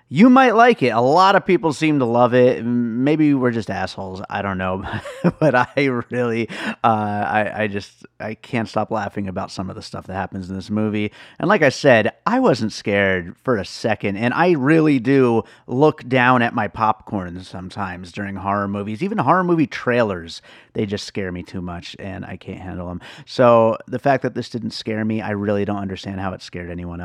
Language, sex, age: English, male, 30-49